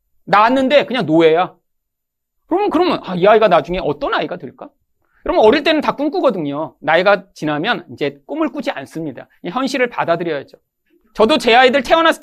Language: Korean